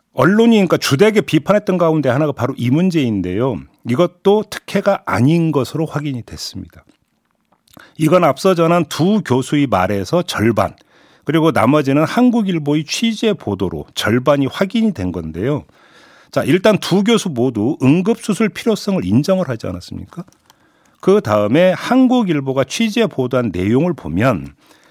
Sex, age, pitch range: male, 50-69, 125-190 Hz